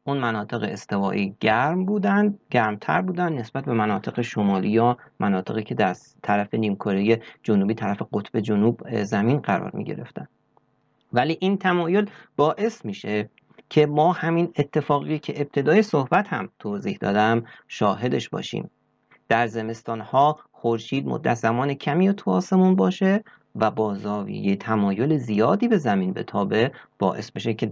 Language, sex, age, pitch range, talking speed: Persian, male, 40-59, 110-180 Hz, 135 wpm